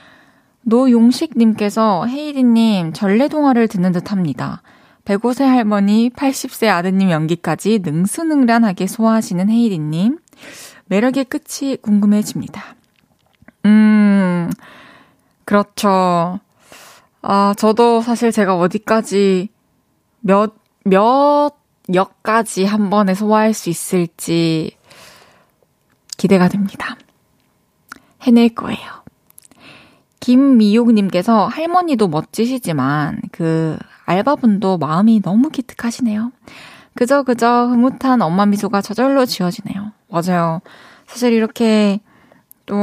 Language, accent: Korean, native